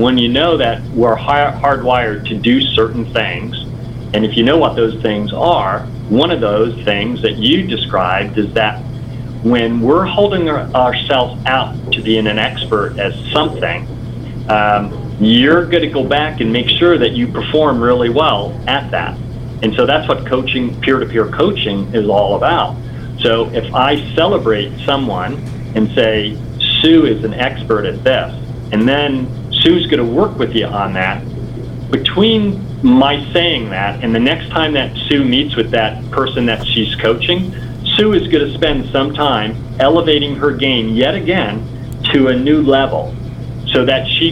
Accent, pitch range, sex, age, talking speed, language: American, 115-130 Hz, male, 40-59, 160 wpm, English